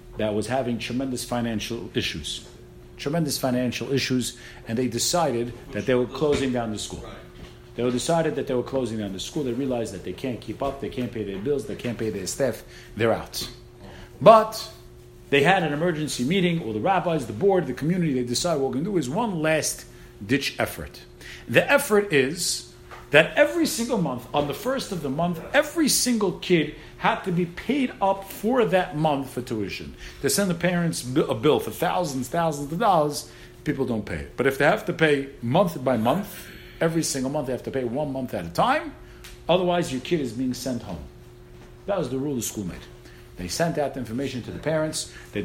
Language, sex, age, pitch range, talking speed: English, male, 50-69, 115-165 Hz, 205 wpm